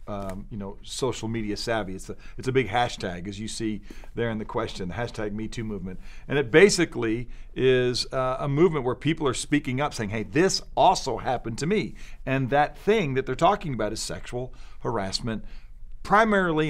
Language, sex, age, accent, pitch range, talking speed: English, male, 50-69, American, 110-145 Hz, 190 wpm